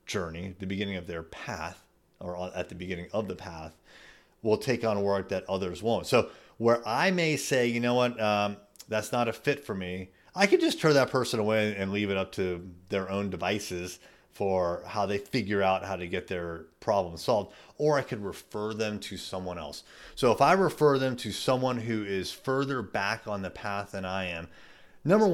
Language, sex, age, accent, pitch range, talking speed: English, male, 30-49, American, 95-130 Hz, 205 wpm